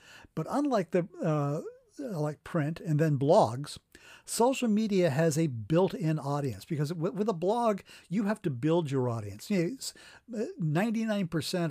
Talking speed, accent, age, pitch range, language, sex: 150 wpm, American, 50-69, 140-180 Hz, English, male